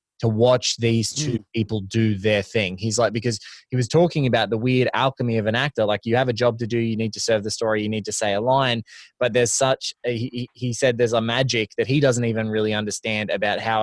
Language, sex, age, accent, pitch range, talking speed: English, male, 20-39, Australian, 110-130 Hz, 250 wpm